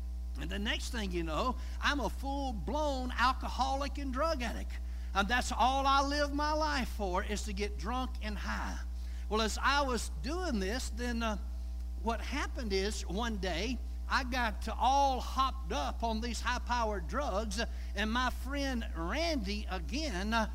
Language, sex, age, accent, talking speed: English, male, 60-79, American, 160 wpm